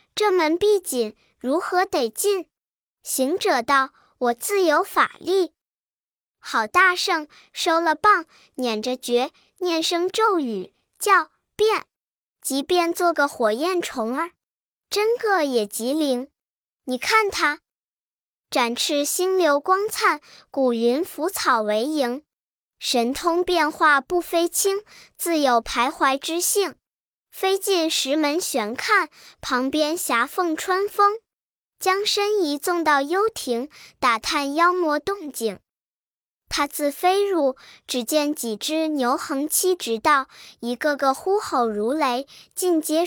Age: 10-29